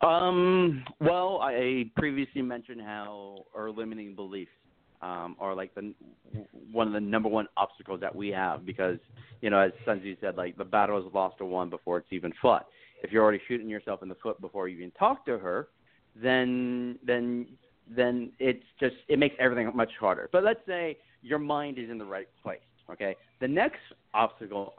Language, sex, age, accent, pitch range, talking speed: English, male, 40-59, American, 105-130 Hz, 185 wpm